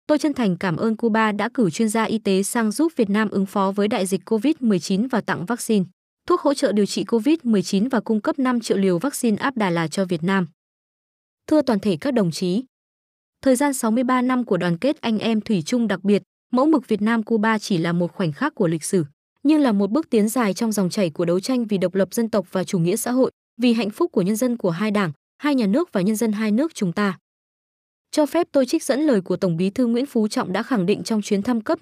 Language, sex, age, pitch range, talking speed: Vietnamese, female, 20-39, 195-250 Hz, 260 wpm